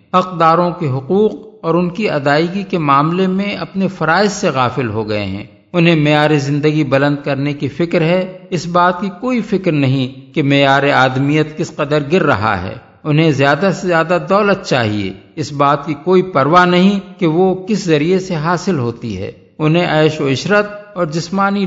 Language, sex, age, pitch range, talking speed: Urdu, male, 50-69, 140-180 Hz, 180 wpm